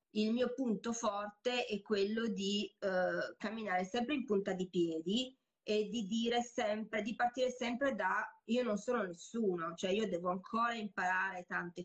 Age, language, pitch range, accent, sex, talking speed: 20-39, Italian, 185-225 Hz, native, female, 160 wpm